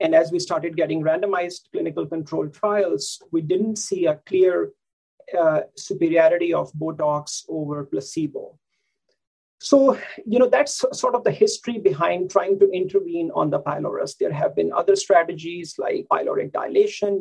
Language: English